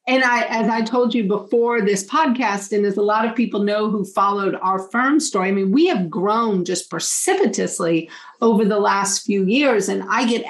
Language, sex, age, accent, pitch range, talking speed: English, female, 40-59, American, 190-240 Hz, 205 wpm